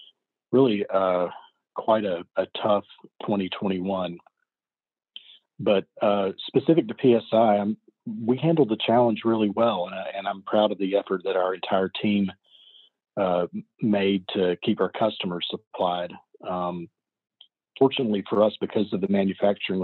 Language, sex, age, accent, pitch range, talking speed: English, male, 40-59, American, 90-105 Hz, 135 wpm